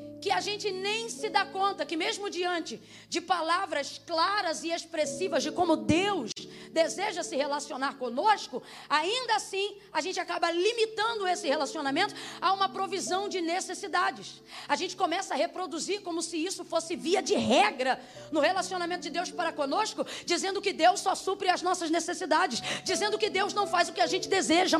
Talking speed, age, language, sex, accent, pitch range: 170 wpm, 20-39, Portuguese, female, Brazilian, 325-395 Hz